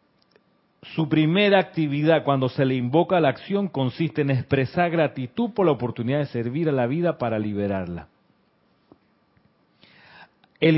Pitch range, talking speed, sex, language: 130-160 Hz, 135 wpm, male, Spanish